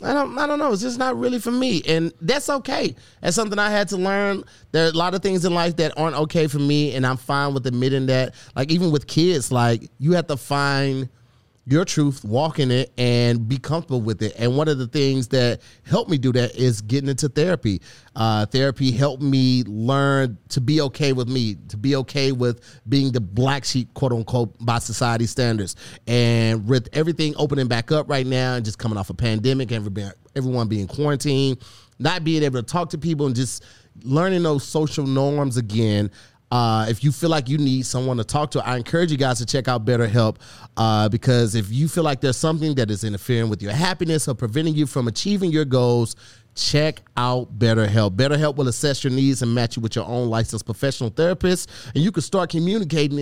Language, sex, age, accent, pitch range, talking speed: English, male, 30-49, American, 120-150 Hz, 210 wpm